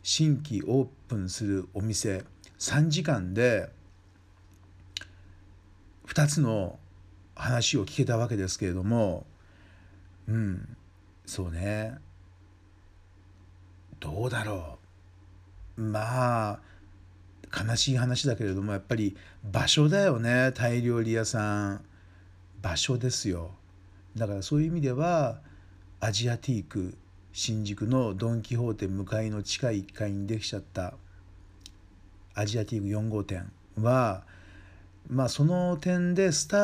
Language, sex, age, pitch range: Japanese, male, 50-69, 95-125 Hz